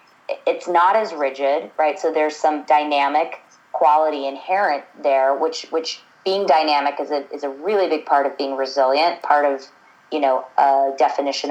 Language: English